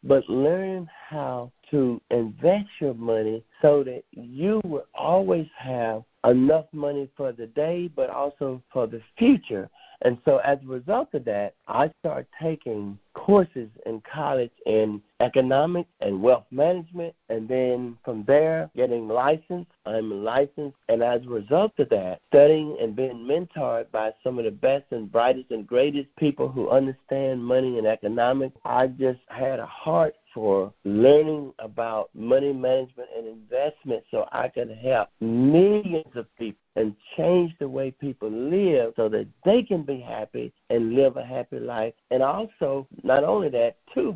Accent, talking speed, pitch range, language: American, 160 wpm, 120-155 Hz, English